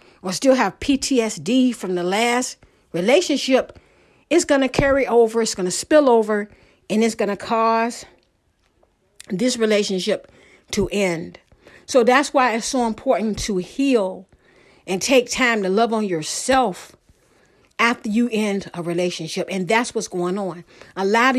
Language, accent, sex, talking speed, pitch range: English, American, female, 150 wpm, 210-265 Hz